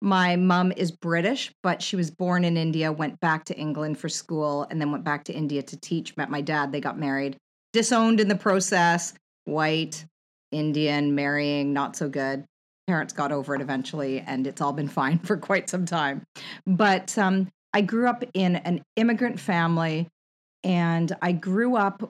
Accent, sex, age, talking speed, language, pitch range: American, female, 40-59, 180 wpm, English, 155-190 Hz